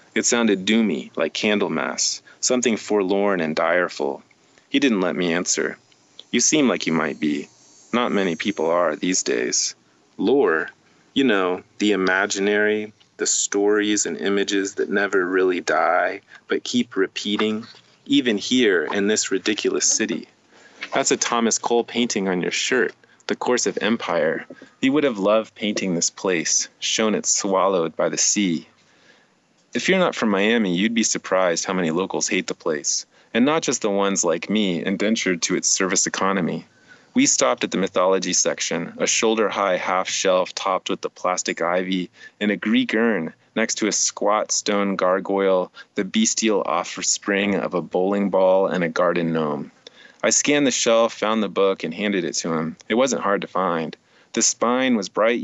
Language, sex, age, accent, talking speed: English, male, 30-49, American, 170 wpm